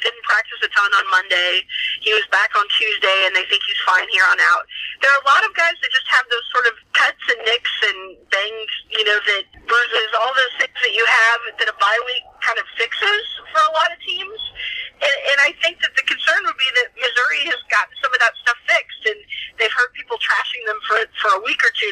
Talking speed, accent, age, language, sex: 240 wpm, American, 30-49, English, female